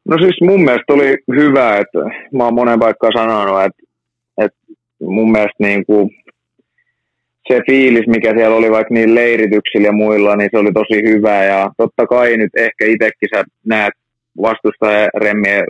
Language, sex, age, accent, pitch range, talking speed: Finnish, male, 30-49, native, 95-120 Hz, 160 wpm